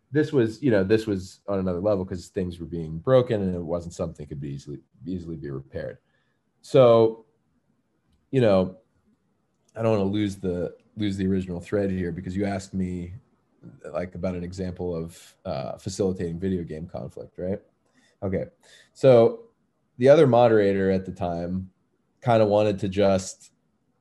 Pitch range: 95-110 Hz